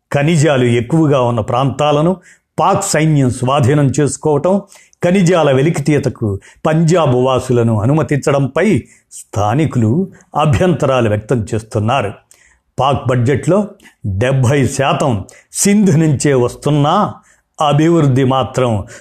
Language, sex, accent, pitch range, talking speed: Telugu, male, native, 120-160 Hz, 80 wpm